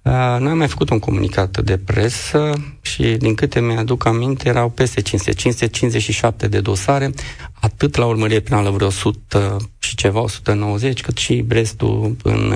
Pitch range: 100-120 Hz